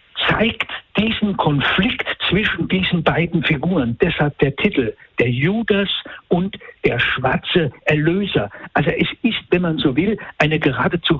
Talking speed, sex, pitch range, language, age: 135 wpm, male, 145-190 Hz, German, 60-79